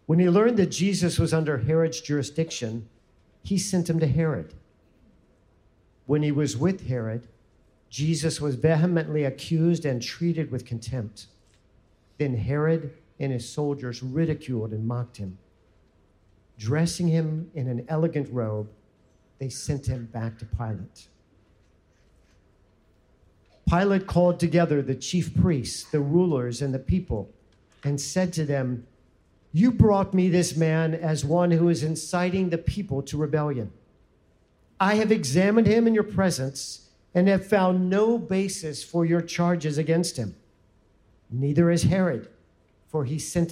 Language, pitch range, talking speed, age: English, 105-165 Hz, 140 wpm, 50-69